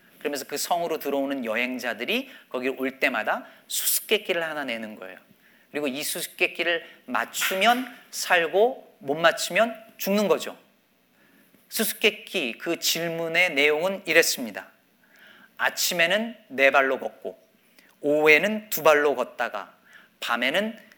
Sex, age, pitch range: male, 40-59, 165-220 Hz